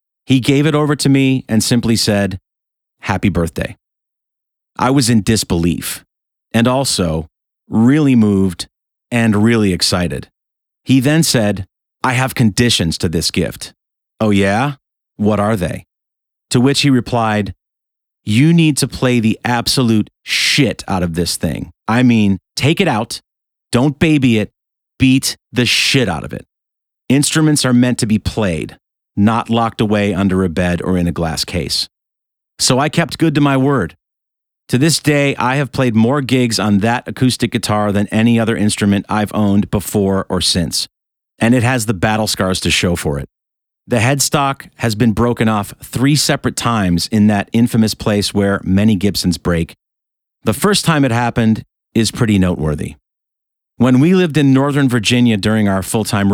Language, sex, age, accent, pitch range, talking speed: English, male, 40-59, American, 100-130 Hz, 165 wpm